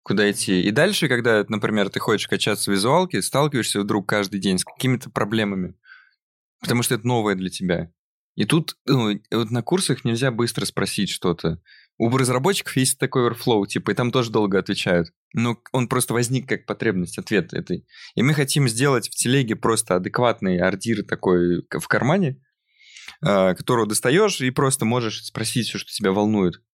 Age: 20-39